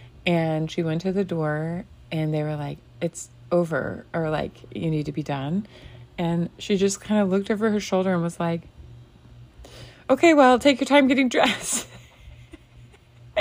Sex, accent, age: female, American, 30-49